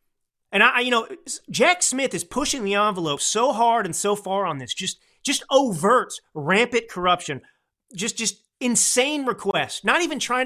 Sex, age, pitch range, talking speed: male, 30-49, 150-230 Hz, 165 wpm